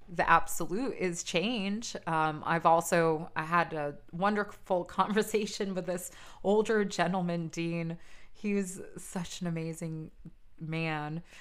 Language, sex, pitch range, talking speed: English, female, 160-195 Hz, 120 wpm